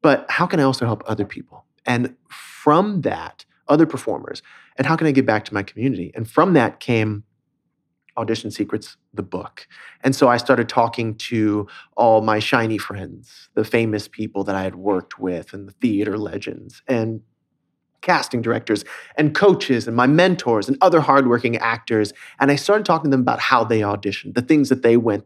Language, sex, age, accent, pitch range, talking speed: English, male, 30-49, American, 110-145 Hz, 190 wpm